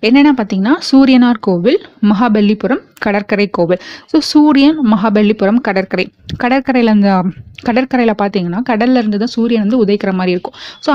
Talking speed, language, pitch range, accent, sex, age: 125 wpm, Tamil, 200-260 Hz, native, female, 20-39